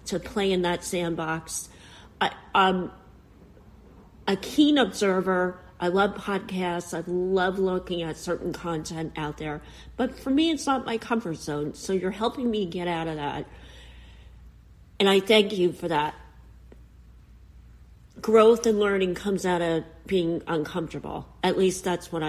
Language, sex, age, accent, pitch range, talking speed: English, female, 40-59, American, 165-205 Hz, 145 wpm